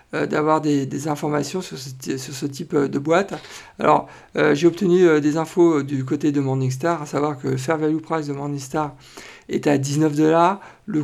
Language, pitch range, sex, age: French, 140-165 Hz, male, 50-69